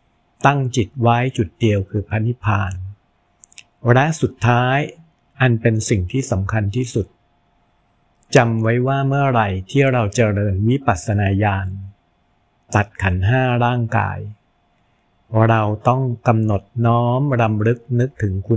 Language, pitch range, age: Thai, 105-125 Hz, 60-79